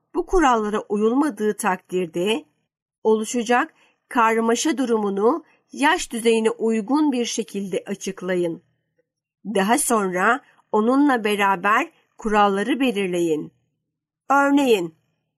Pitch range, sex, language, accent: 190-245 Hz, female, Turkish, native